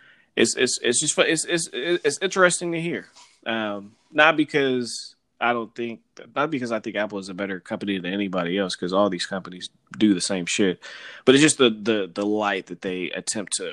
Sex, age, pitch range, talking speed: male, 20-39, 110-140 Hz, 205 wpm